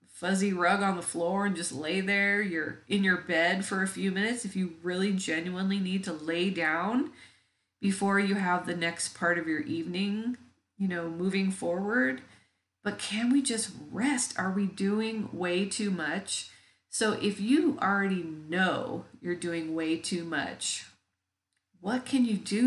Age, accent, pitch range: 40-59, American, 170-210 Hz